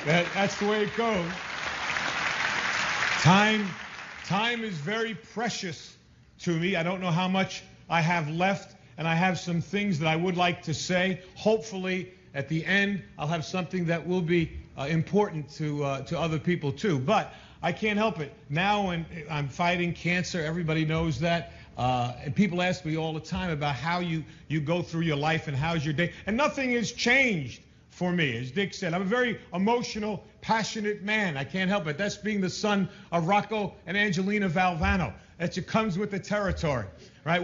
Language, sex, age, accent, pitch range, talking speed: English, male, 50-69, American, 165-210 Hz, 185 wpm